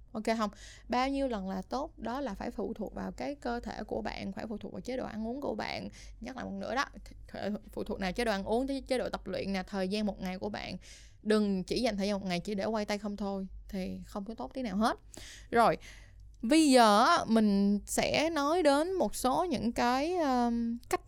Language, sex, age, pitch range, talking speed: Vietnamese, female, 10-29, 205-260 Hz, 235 wpm